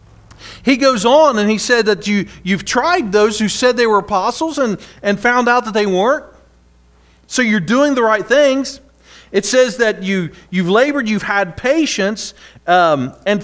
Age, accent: 40-59, American